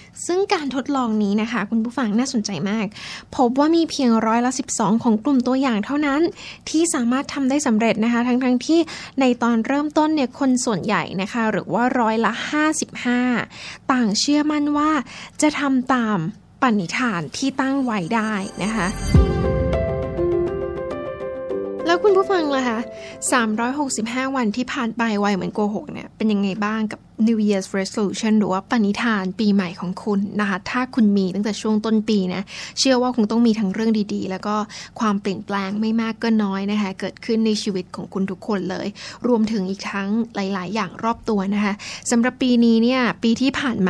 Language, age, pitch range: Thai, 10-29, 200-250 Hz